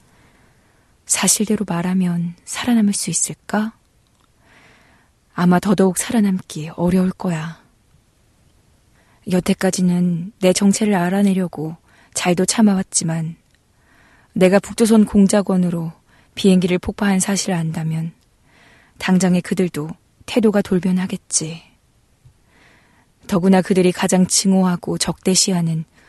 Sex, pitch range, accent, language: female, 170-200 Hz, native, Korean